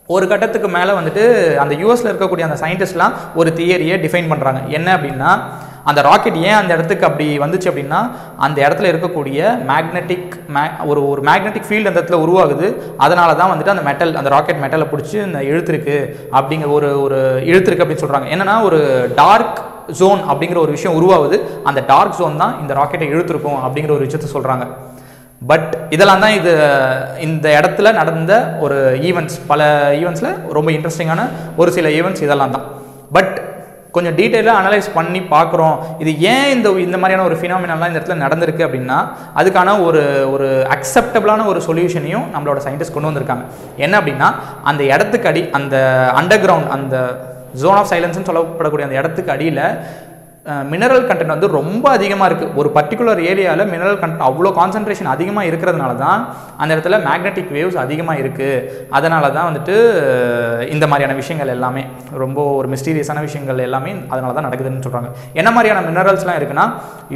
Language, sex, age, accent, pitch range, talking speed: Tamil, male, 20-39, native, 140-185 Hz, 150 wpm